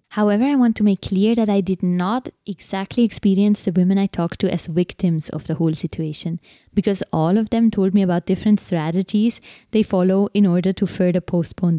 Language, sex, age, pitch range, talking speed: English, female, 20-39, 170-200 Hz, 200 wpm